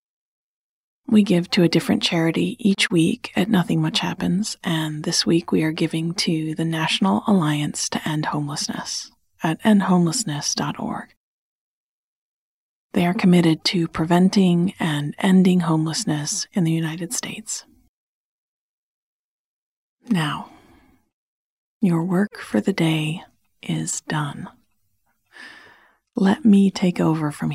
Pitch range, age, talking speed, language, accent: 165-205 Hz, 40-59, 115 wpm, English, American